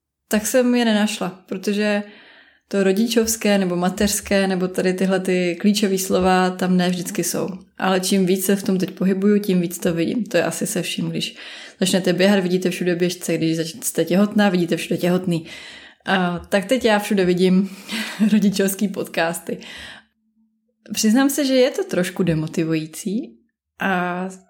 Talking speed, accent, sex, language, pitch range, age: 155 wpm, native, female, Czech, 180-215 Hz, 20-39